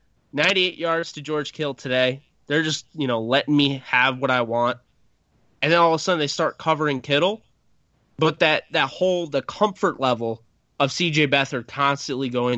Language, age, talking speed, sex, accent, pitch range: English, 20-39, 180 wpm, male, American, 125-160 Hz